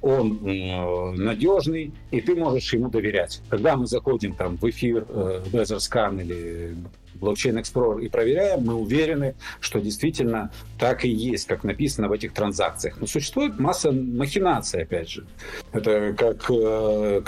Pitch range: 105-135 Hz